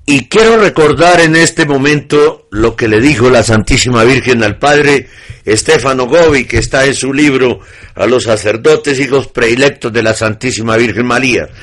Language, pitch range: Spanish, 115-155 Hz